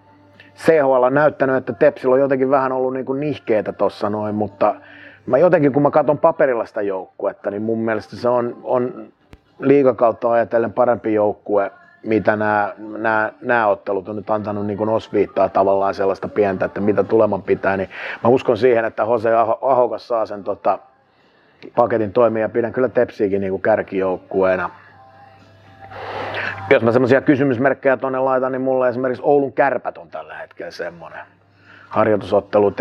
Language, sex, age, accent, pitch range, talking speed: Finnish, male, 30-49, native, 105-130 Hz, 150 wpm